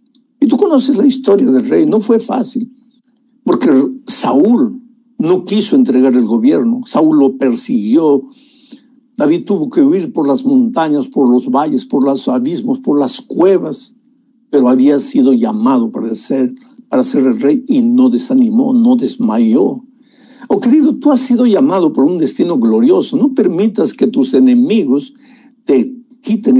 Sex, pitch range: male, 215-255 Hz